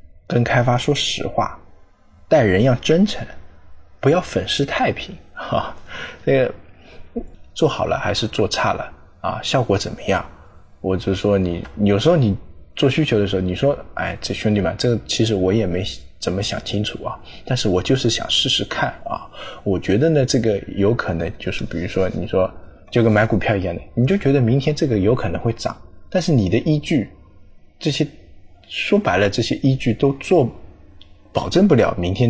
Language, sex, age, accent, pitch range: Chinese, male, 20-39, native, 95-140 Hz